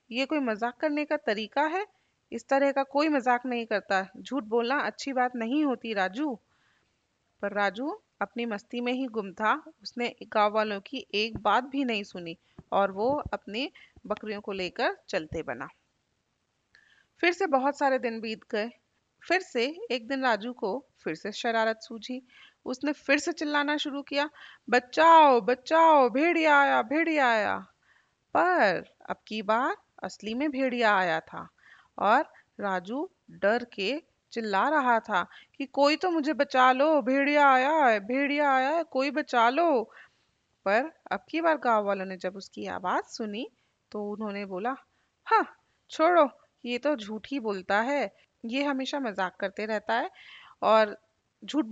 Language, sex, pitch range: Hindi, female, 215-285 Hz